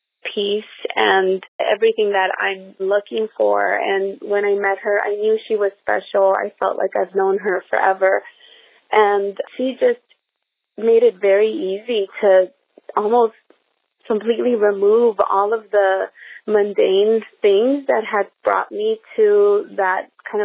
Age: 30-49